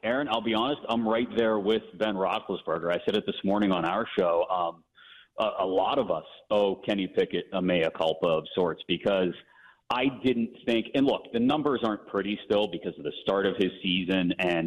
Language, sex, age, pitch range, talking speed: English, male, 40-59, 90-110 Hz, 210 wpm